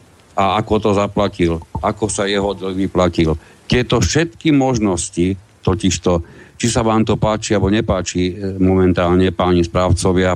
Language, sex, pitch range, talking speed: Slovak, male, 90-110 Hz, 135 wpm